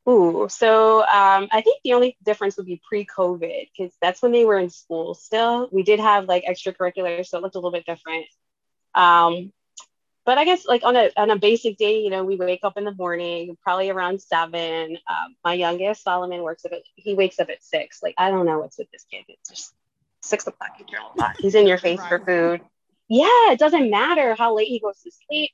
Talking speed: 215 wpm